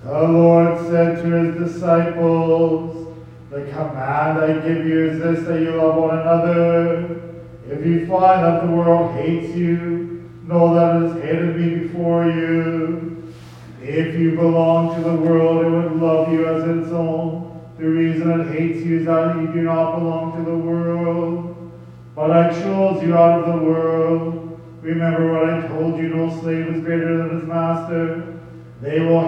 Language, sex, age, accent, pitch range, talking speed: English, male, 40-59, American, 160-170 Hz, 170 wpm